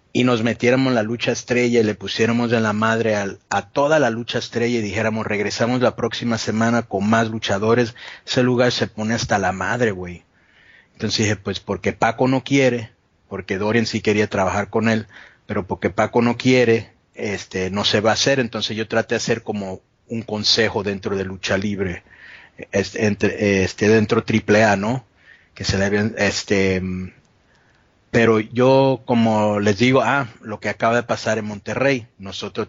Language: English